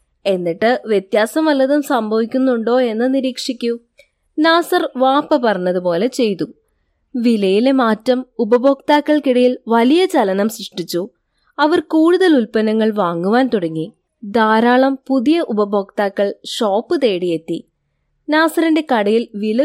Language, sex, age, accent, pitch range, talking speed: Malayalam, female, 20-39, native, 200-270 Hz, 90 wpm